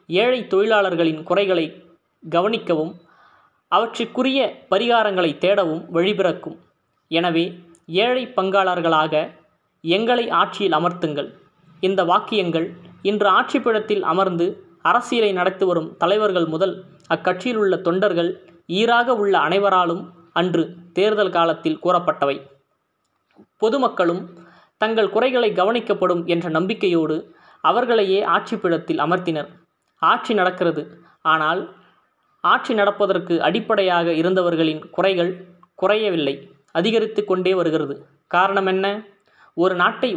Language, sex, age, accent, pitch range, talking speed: Tamil, female, 20-39, native, 170-215 Hz, 85 wpm